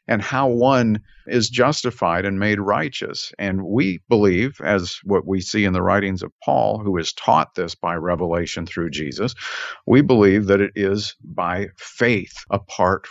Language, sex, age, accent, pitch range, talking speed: English, male, 50-69, American, 100-130 Hz, 165 wpm